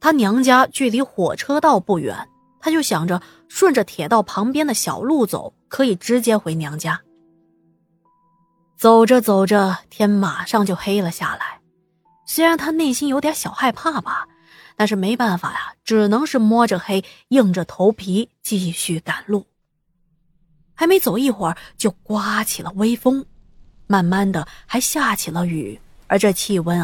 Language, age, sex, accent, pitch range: Chinese, 20-39, female, native, 180-245 Hz